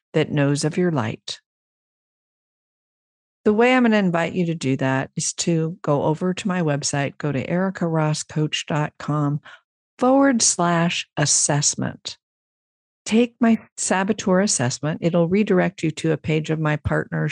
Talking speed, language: 140 wpm, English